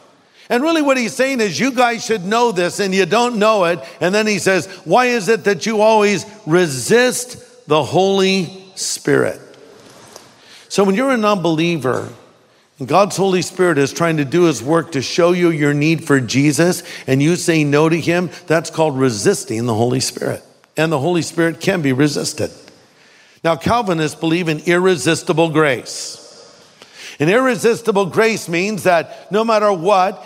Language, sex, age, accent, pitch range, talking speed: English, male, 50-69, American, 155-210 Hz, 170 wpm